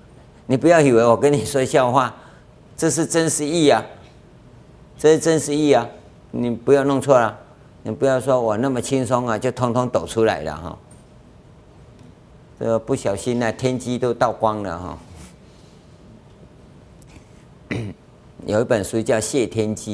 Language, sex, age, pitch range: Chinese, male, 50-69, 100-140 Hz